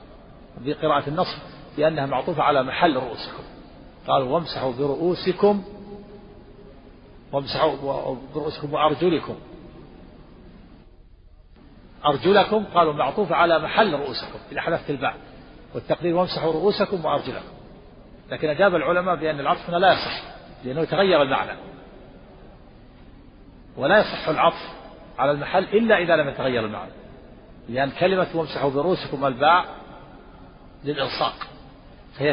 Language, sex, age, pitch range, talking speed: Arabic, male, 50-69, 140-185 Hz, 100 wpm